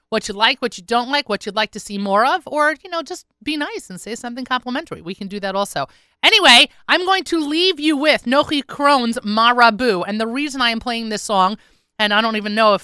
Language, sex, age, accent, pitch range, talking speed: English, female, 30-49, American, 200-250 Hz, 250 wpm